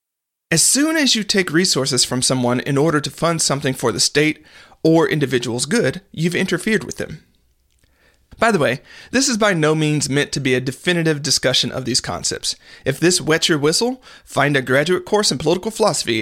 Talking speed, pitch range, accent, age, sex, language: 190 wpm, 135-180 Hz, American, 40-59, male, English